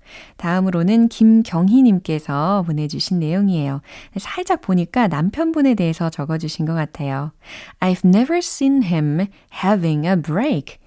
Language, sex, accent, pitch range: Korean, female, native, 155-235 Hz